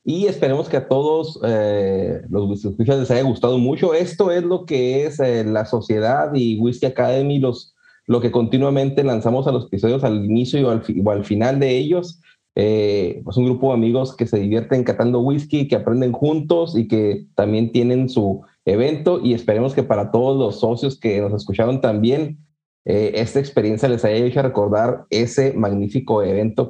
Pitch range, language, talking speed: 115-150 Hz, Spanish, 185 wpm